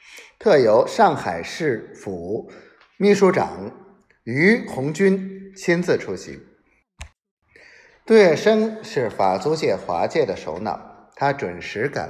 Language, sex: Chinese, male